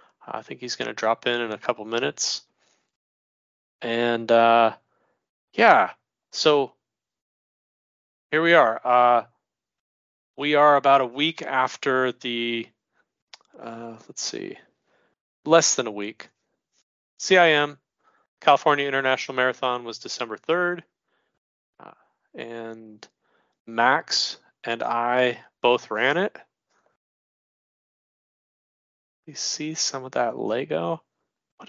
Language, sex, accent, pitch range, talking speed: English, male, American, 105-140 Hz, 105 wpm